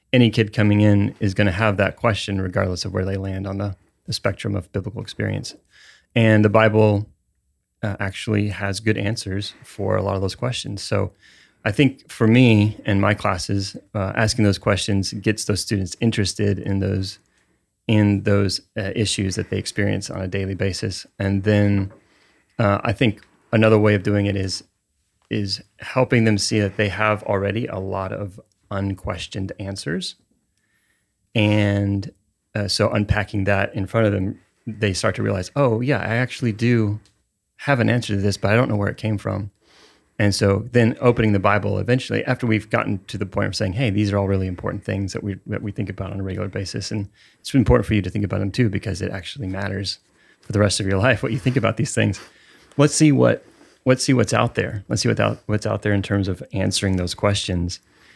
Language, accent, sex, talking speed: English, American, male, 205 wpm